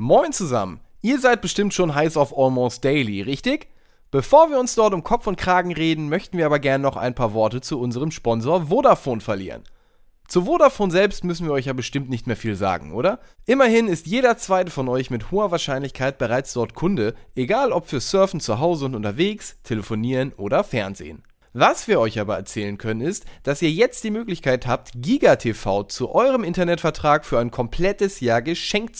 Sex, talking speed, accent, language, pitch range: male, 190 wpm, German, German, 120-195 Hz